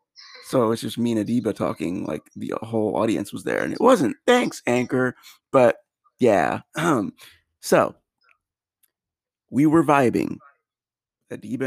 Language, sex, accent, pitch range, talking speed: English, male, American, 115-155 Hz, 130 wpm